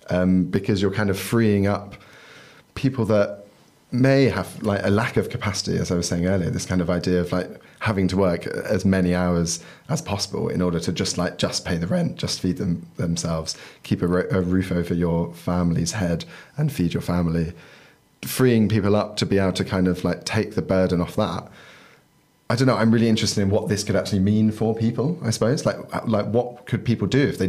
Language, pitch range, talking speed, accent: English, 90-110 Hz, 220 wpm, British